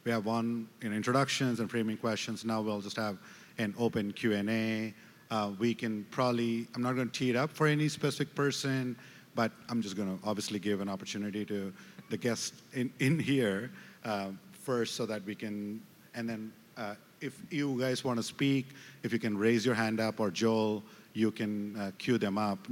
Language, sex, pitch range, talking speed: English, male, 105-130 Hz, 195 wpm